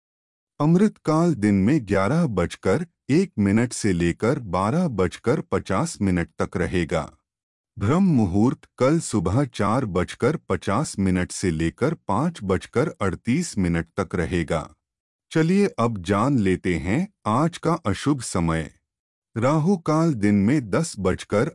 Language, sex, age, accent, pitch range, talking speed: Hindi, male, 30-49, native, 90-145 Hz, 130 wpm